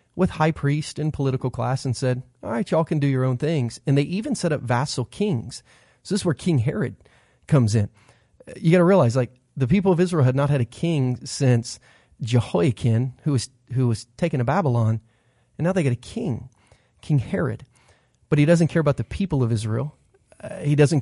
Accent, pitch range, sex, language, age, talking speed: American, 120-155 Hz, male, English, 30-49, 210 wpm